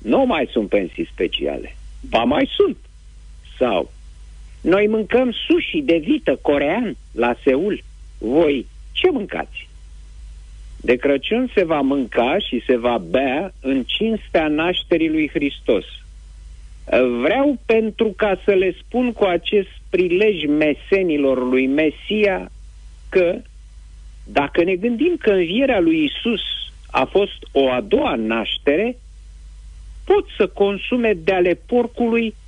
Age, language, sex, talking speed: 50-69, Romanian, male, 120 wpm